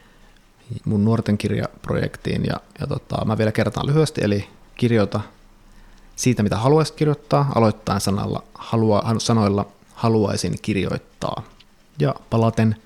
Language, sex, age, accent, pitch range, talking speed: Finnish, male, 30-49, native, 105-130 Hz, 110 wpm